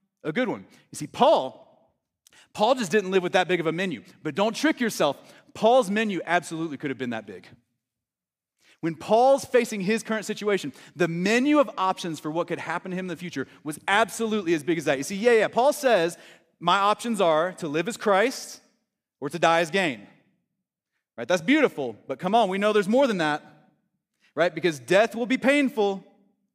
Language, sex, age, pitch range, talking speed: English, male, 30-49, 180-265 Hz, 200 wpm